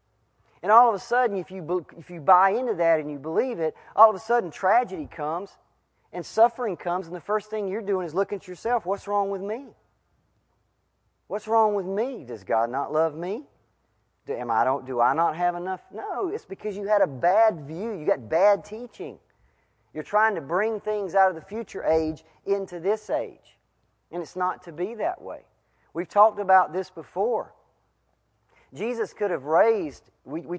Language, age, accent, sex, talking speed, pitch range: English, 40-59, American, male, 195 wpm, 175-220 Hz